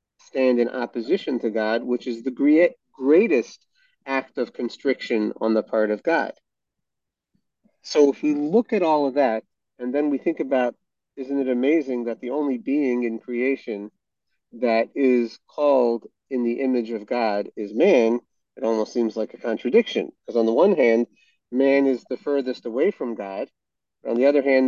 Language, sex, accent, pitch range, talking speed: English, male, American, 120-145 Hz, 175 wpm